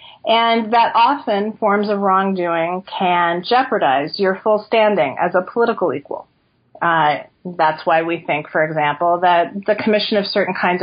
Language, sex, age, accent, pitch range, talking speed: English, female, 40-59, American, 175-215 Hz, 155 wpm